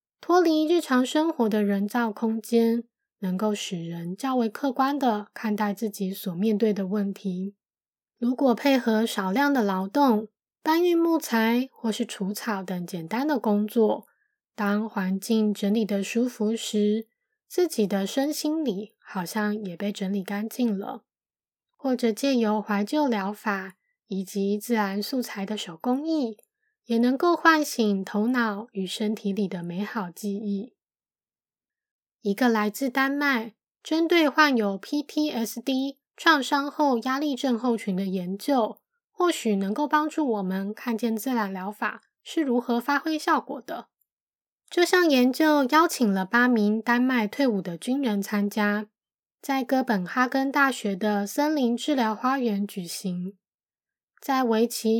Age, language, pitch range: 20-39, Chinese, 205-275 Hz